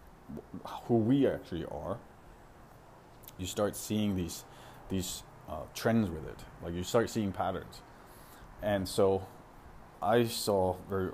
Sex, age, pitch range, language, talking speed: male, 30-49, 85-105 Hz, English, 125 wpm